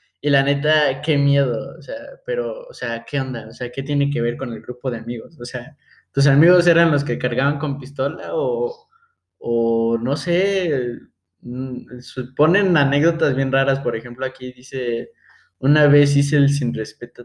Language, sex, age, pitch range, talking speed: Spanish, male, 20-39, 130-165 Hz, 175 wpm